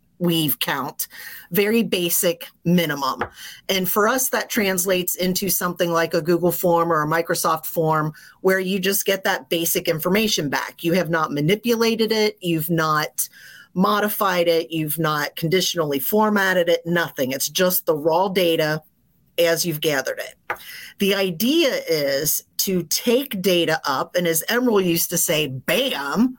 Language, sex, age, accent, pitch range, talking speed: English, female, 30-49, American, 165-205 Hz, 150 wpm